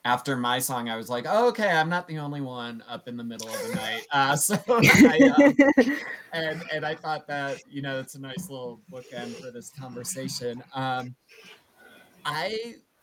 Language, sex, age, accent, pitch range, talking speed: English, male, 20-39, American, 120-155 Hz, 180 wpm